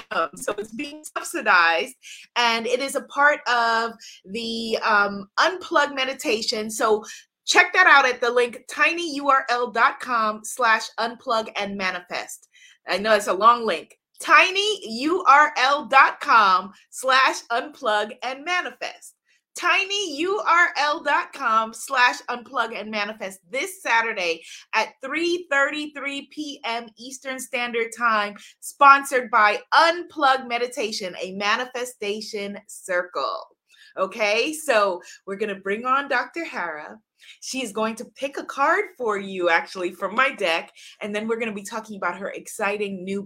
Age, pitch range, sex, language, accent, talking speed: 30-49, 210-280 Hz, female, English, American, 115 wpm